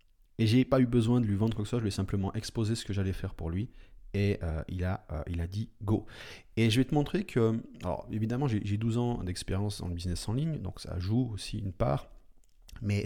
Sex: male